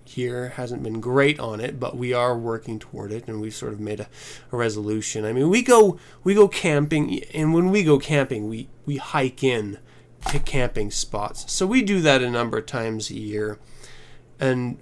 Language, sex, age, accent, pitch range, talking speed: English, male, 20-39, American, 120-150 Hz, 205 wpm